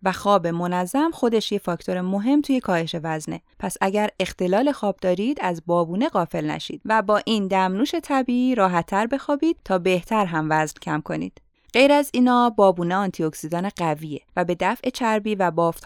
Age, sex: 20-39, female